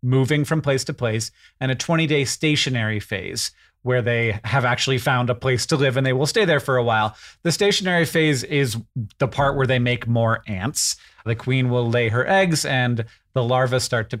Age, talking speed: 30-49, 205 wpm